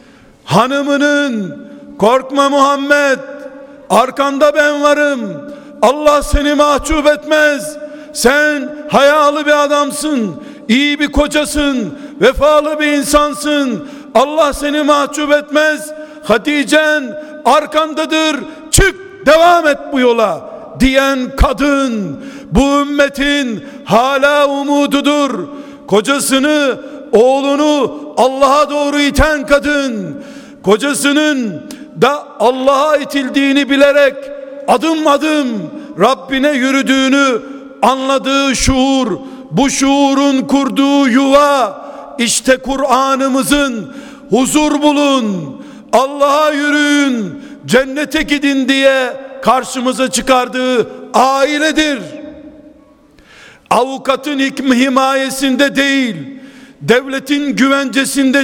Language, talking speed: Turkish, 75 wpm